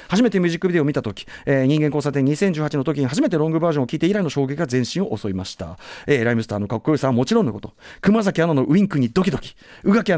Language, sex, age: Japanese, male, 40-59